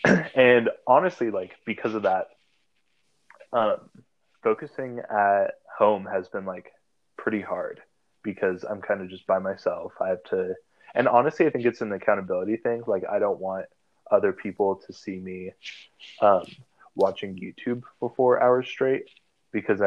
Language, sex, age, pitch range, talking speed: English, male, 20-39, 95-125 Hz, 150 wpm